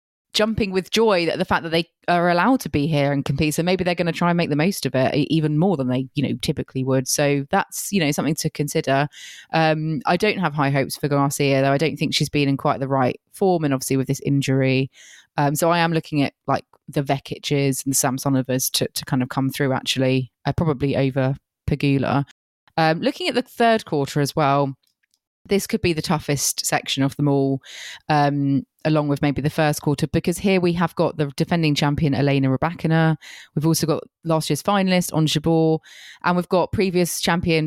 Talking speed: 215 wpm